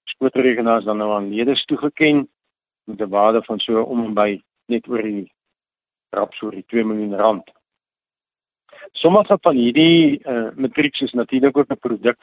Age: 50-69